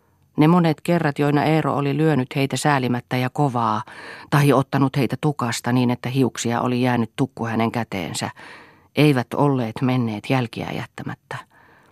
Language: Finnish